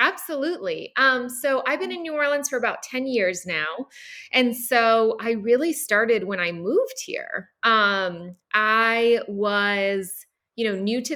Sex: female